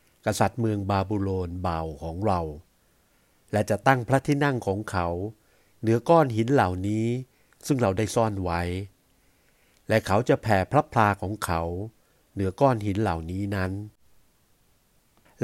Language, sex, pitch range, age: Thai, male, 95-125 Hz, 60-79